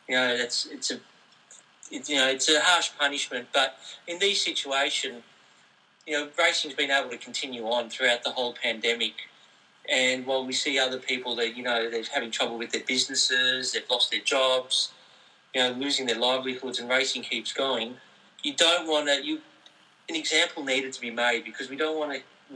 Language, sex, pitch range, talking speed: English, male, 120-140 Hz, 190 wpm